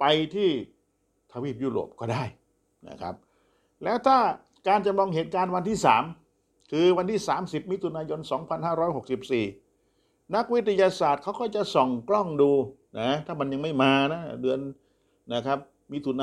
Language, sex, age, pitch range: Thai, male, 60-79, 120-170 Hz